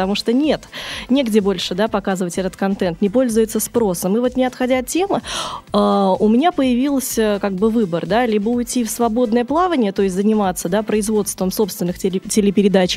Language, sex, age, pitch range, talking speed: Russian, female, 20-39, 195-240 Hz, 160 wpm